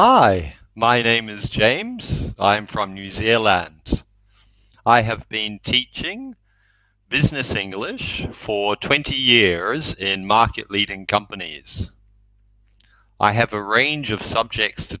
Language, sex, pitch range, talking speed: English, male, 100-120 Hz, 120 wpm